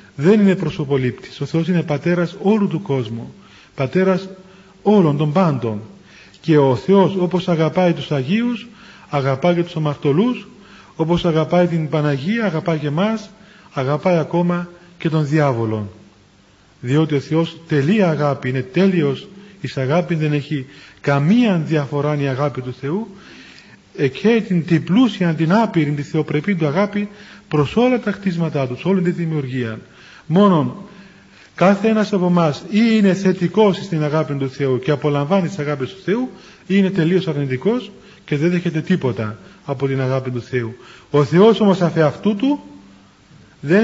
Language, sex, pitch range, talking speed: Greek, male, 140-190 Hz, 150 wpm